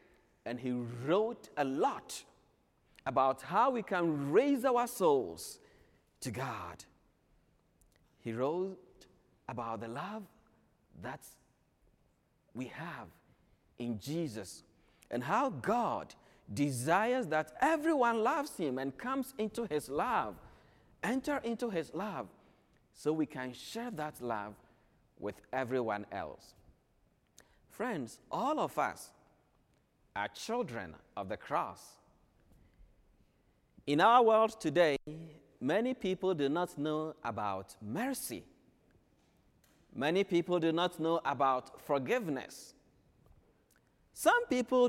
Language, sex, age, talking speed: English, male, 50-69, 105 wpm